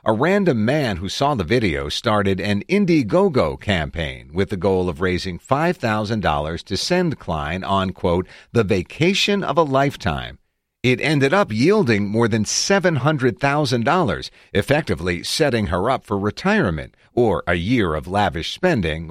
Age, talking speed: 50-69, 145 wpm